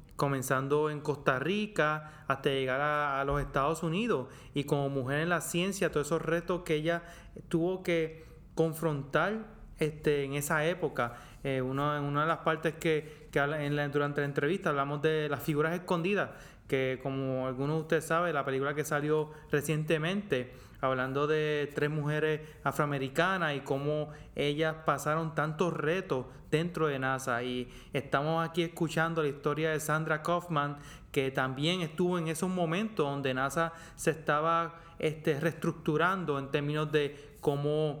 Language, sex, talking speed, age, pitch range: English, male, 155 wpm, 30-49, 140-165 Hz